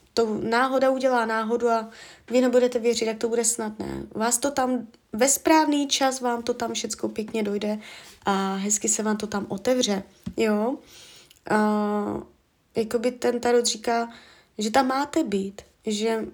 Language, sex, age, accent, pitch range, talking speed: Czech, female, 20-39, native, 215-255 Hz, 145 wpm